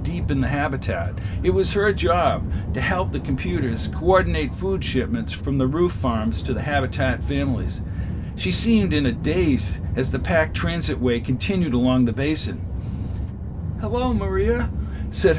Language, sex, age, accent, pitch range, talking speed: English, male, 50-69, American, 90-120 Hz, 150 wpm